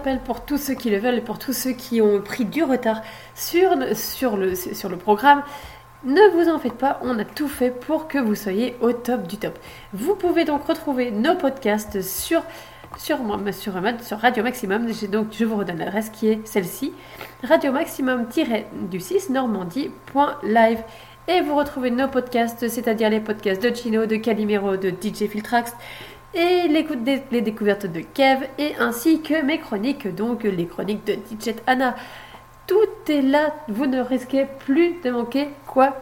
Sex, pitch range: female, 215-280 Hz